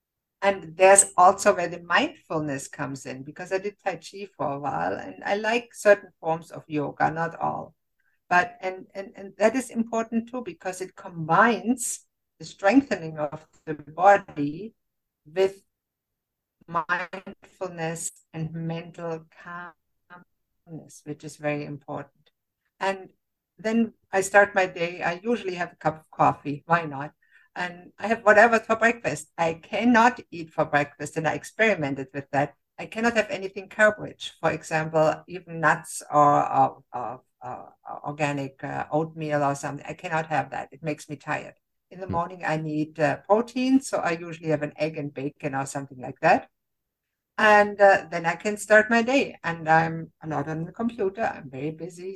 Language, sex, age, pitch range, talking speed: English, female, 60-79, 150-200 Hz, 165 wpm